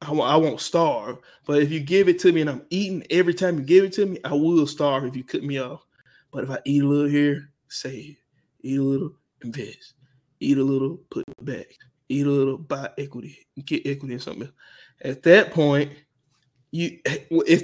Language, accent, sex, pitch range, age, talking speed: English, American, male, 135-160 Hz, 20-39, 200 wpm